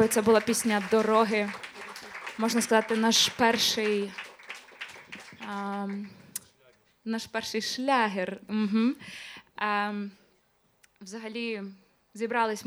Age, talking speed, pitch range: 20-39, 65 wpm, 195-225 Hz